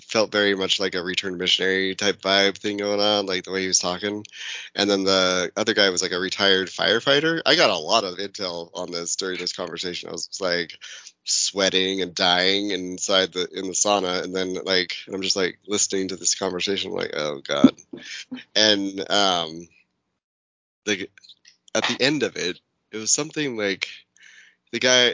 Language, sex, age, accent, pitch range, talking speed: English, male, 20-39, American, 90-105 Hz, 185 wpm